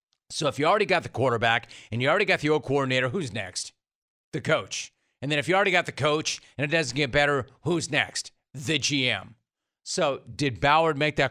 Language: English